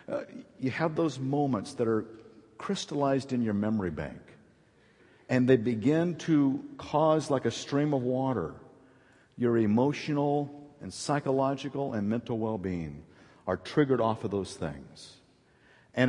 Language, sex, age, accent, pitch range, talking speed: English, male, 50-69, American, 110-145 Hz, 130 wpm